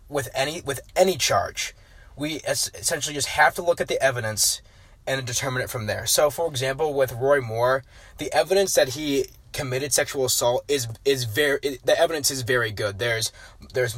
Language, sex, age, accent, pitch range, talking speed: English, male, 20-39, American, 115-145 Hz, 180 wpm